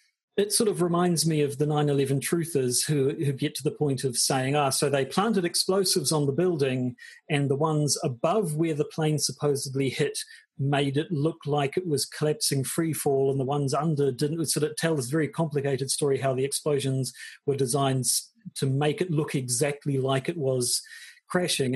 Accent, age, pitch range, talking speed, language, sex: British, 40-59, 130-160 Hz, 190 wpm, English, male